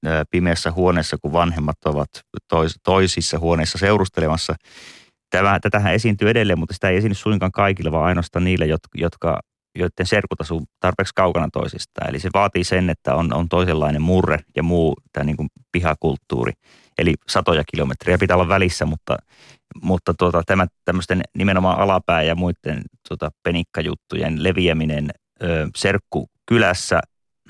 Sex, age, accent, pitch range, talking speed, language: male, 30-49, native, 80-95 Hz, 130 wpm, Finnish